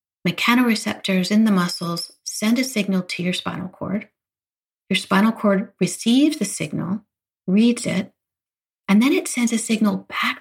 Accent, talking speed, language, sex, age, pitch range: American, 150 wpm, English, female, 30-49, 180-225 Hz